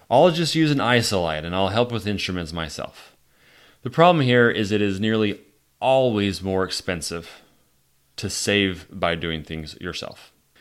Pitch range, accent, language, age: 90-110 Hz, American, English, 30-49